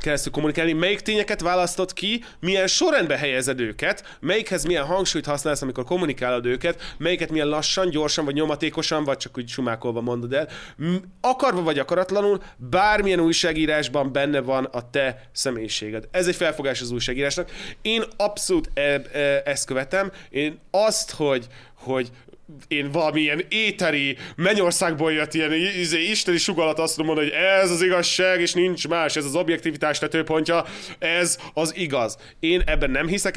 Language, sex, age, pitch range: Hungarian, male, 30-49, 135-180 Hz